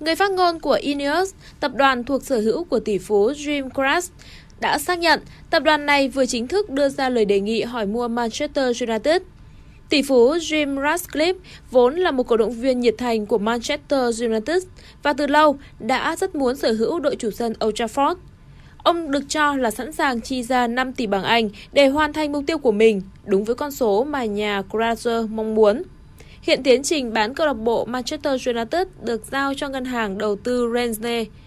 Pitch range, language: 230-300 Hz, Vietnamese